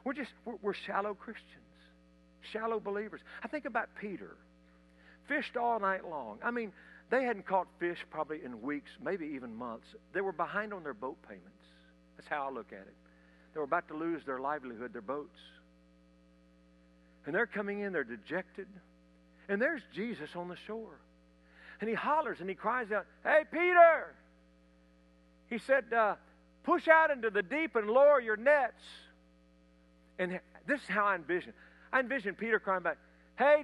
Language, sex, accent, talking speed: English, male, American, 170 wpm